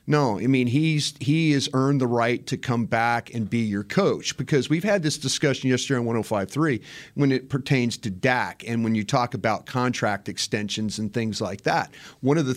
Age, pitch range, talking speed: 40-59, 110-135 Hz, 205 wpm